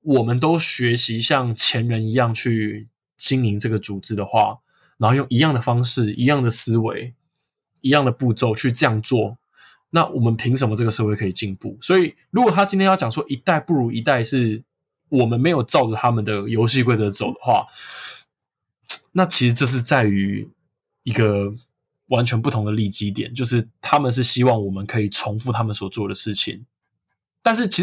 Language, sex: Chinese, male